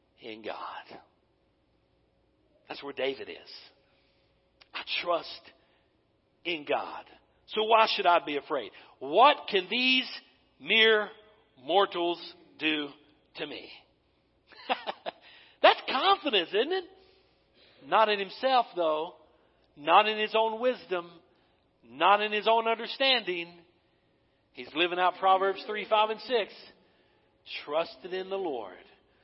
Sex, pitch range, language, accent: male, 175-235 Hz, English, American